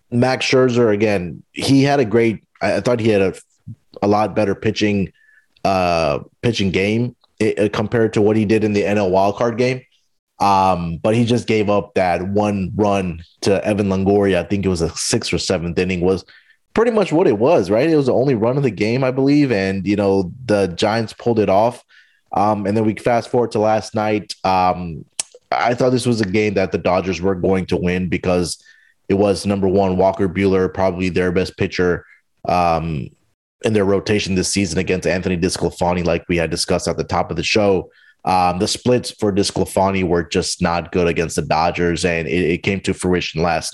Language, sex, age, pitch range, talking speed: English, male, 30-49, 90-105 Hz, 205 wpm